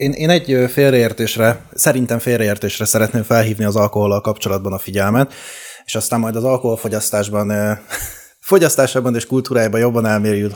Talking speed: 130 wpm